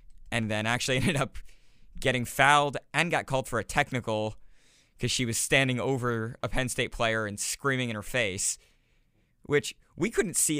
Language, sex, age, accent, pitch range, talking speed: English, male, 20-39, American, 110-130 Hz, 175 wpm